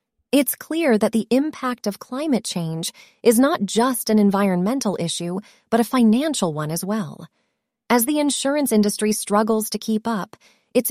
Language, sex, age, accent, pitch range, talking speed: English, female, 30-49, American, 185-240 Hz, 160 wpm